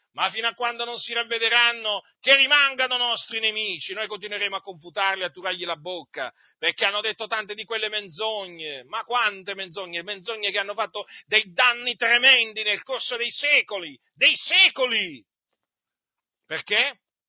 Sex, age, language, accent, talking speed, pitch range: male, 40-59, Italian, native, 150 wpm, 185-240 Hz